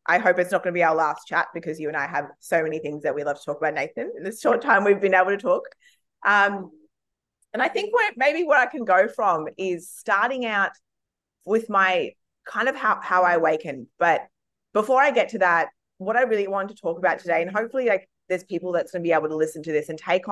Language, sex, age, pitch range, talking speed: English, female, 20-39, 155-190 Hz, 255 wpm